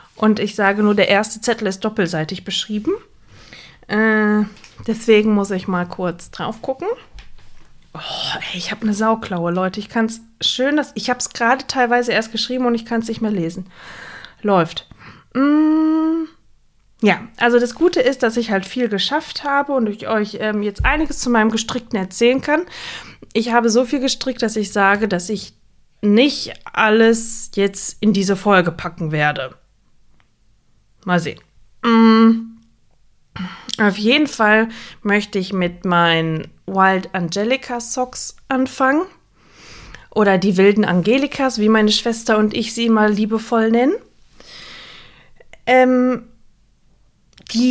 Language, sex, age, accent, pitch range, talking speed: German, female, 20-39, German, 195-240 Hz, 140 wpm